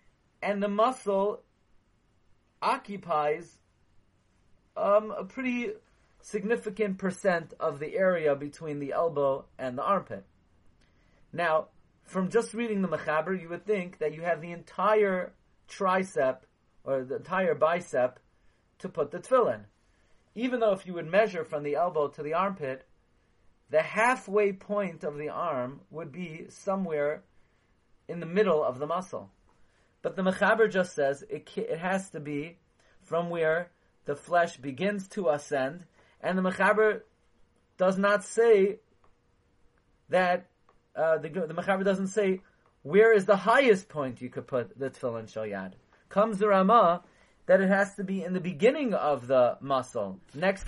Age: 40-59